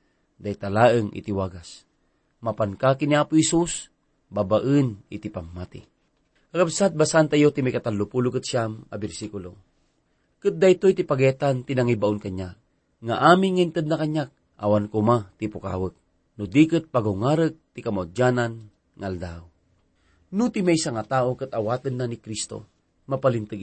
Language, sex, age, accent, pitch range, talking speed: English, male, 40-59, Filipino, 100-145 Hz, 120 wpm